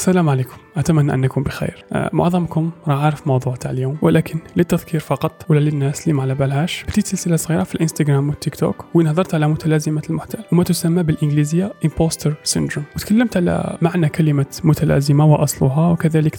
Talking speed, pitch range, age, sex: 160 wpm, 150-175 Hz, 20-39, male